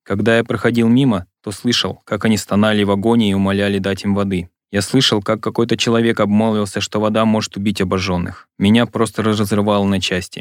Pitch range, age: 95-115 Hz, 20-39